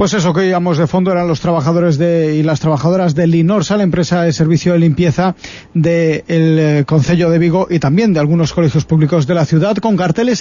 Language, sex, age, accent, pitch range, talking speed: Spanish, male, 40-59, Spanish, 170-205 Hz, 215 wpm